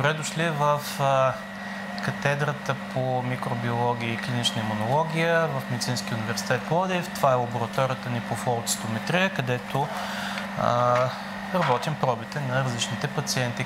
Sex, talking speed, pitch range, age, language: male, 120 wpm, 120-165 Hz, 30-49, Bulgarian